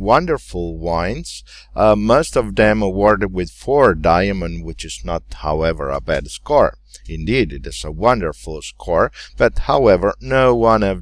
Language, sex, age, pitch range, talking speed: English, male, 50-69, 85-115 Hz, 150 wpm